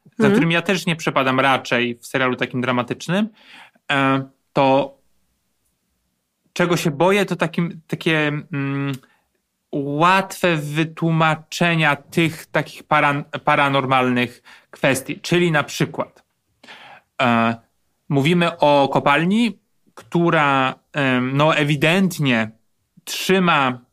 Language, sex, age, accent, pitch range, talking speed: Polish, male, 30-49, native, 125-160 Hz, 95 wpm